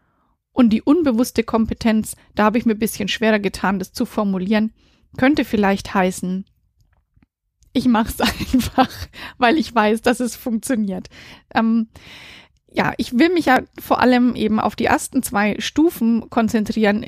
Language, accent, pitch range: German, German, 210-255 Hz